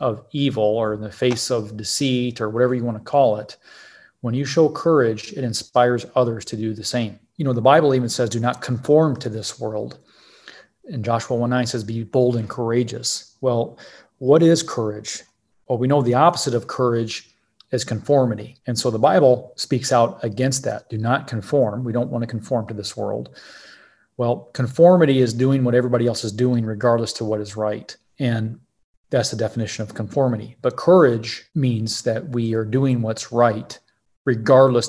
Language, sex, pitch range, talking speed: English, male, 115-130 Hz, 185 wpm